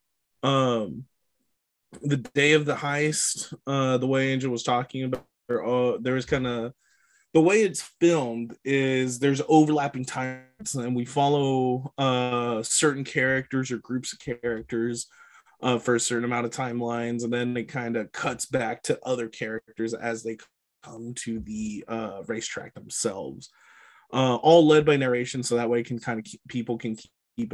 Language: English